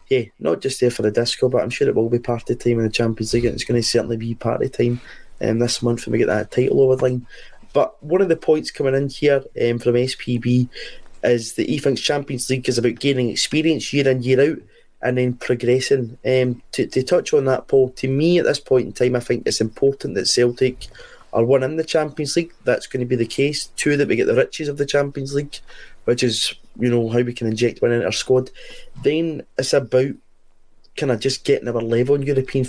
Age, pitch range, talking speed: 20-39, 120-135 Hz, 250 wpm